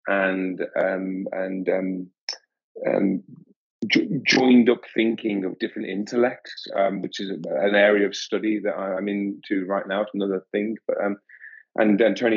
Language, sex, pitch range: English, male, 100-120 Hz